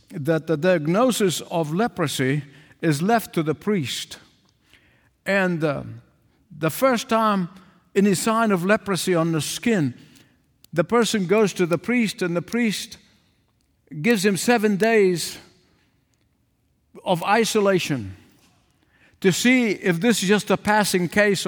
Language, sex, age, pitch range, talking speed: English, male, 60-79, 170-230 Hz, 130 wpm